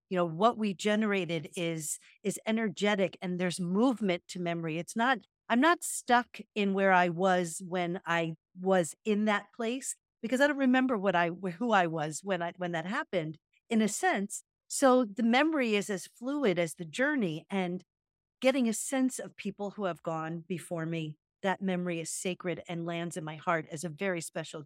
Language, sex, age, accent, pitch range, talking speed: English, female, 50-69, American, 175-235 Hz, 190 wpm